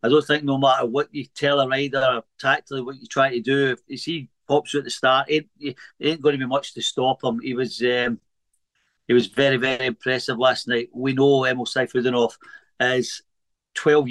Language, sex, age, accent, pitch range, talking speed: English, male, 50-69, British, 125-140 Hz, 215 wpm